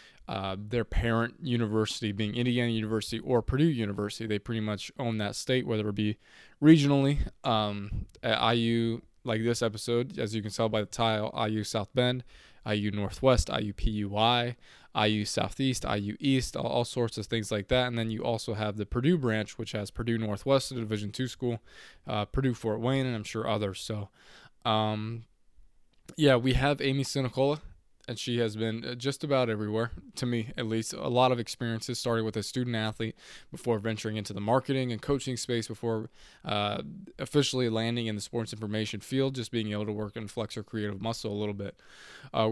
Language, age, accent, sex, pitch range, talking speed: English, 20-39, American, male, 110-125 Hz, 185 wpm